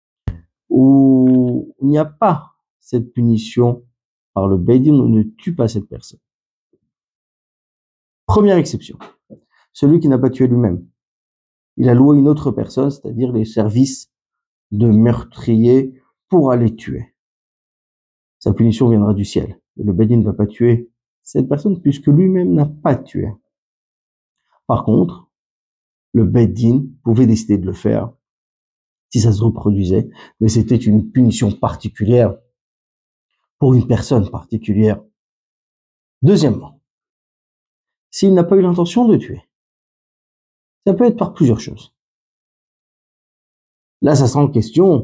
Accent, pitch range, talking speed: French, 110-135 Hz, 130 wpm